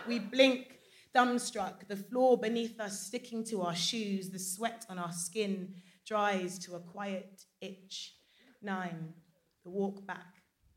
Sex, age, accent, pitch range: female, 20-39, British, 175-205 Hz